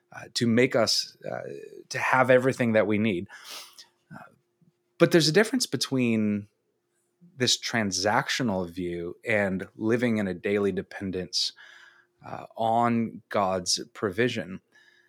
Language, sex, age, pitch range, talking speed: English, male, 20-39, 95-120 Hz, 125 wpm